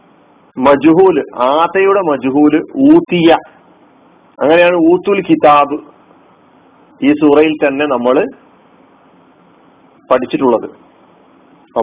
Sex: male